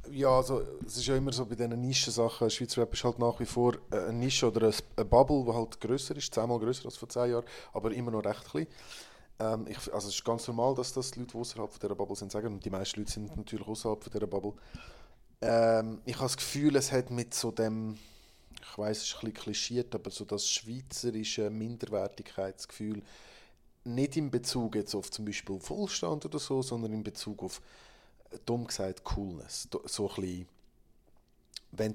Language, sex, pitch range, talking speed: German, male, 105-125 Hz, 195 wpm